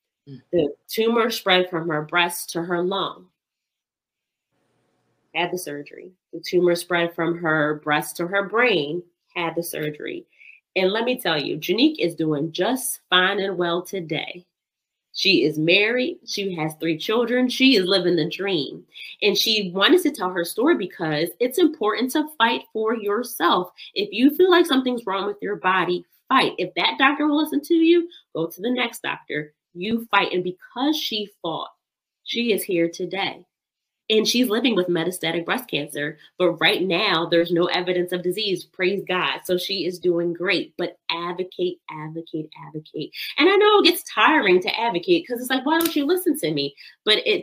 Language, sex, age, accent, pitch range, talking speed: English, female, 30-49, American, 170-245 Hz, 175 wpm